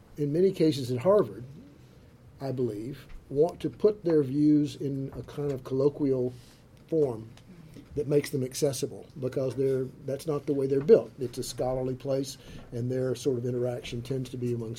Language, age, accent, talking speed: English, 50-69, American, 175 wpm